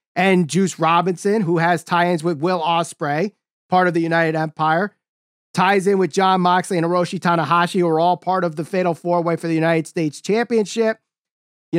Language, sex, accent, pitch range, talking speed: English, male, American, 170-210 Hz, 185 wpm